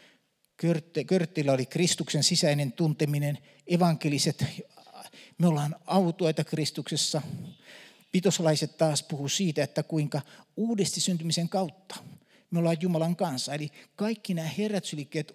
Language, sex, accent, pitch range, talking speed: Finnish, male, native, 150-195 Hz, 105 wpm